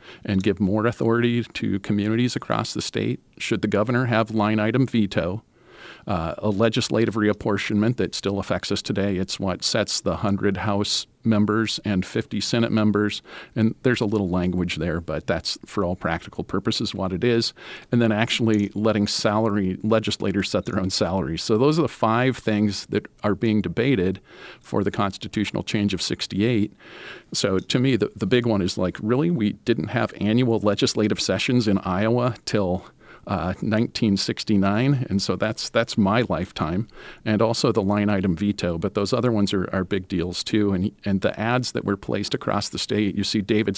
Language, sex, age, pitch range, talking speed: English, male, 50-69, 100-115 Hz, 180 wpm